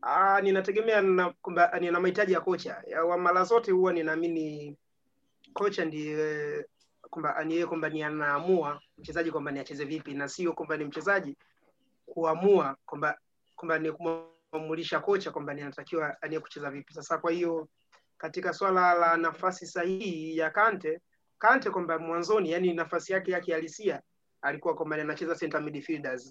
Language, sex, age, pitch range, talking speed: Swahili, male, 30-49, 155-180 Hz, 135 wpm